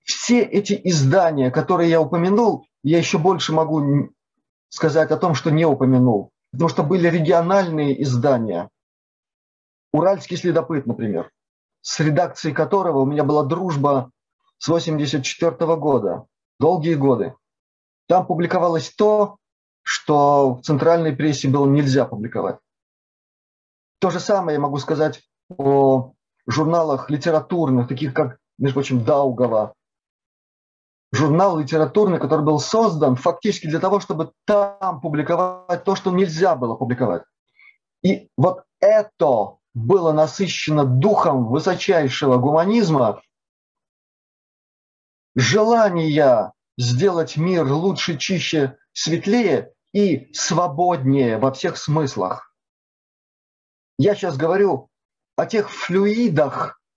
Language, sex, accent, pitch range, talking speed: Russian, male, native, 140-185 Hz, 105 wpm